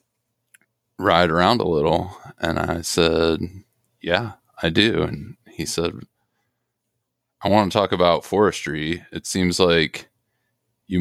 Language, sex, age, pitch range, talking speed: English, male, 20-39, 80-95 Hz, 125 wpm